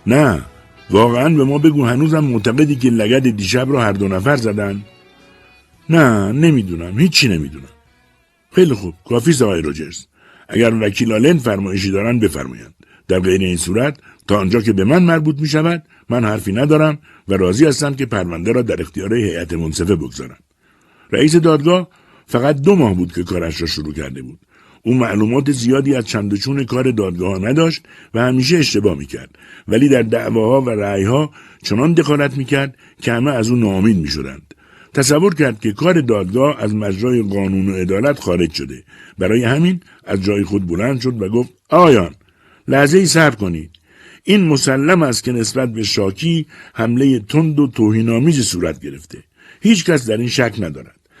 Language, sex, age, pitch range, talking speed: Persian, male, 60-79, 95-145 Hz, 160 wpm